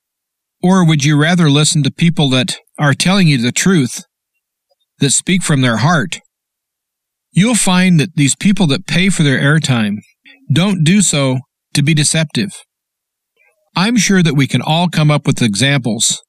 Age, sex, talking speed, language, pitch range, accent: 50-69, male, 160 wpm, English, 145-180 Hz, American